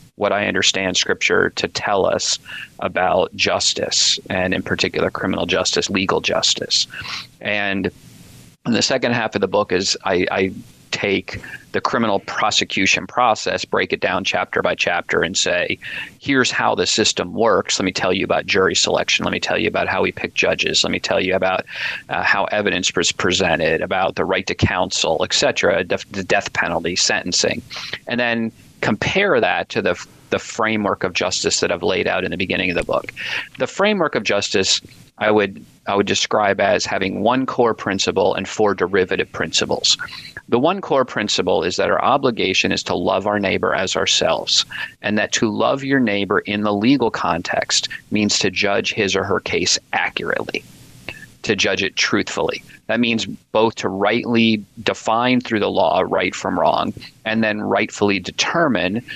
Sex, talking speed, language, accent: male, 175 wpm, English, American